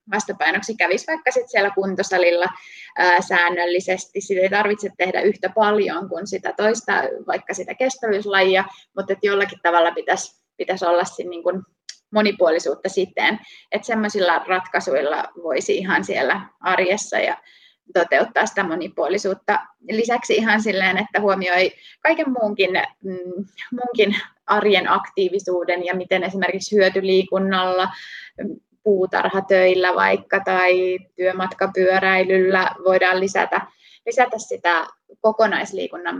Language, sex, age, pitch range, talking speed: Finnish, female, 20-39, 185-210 Hz, 105 wpm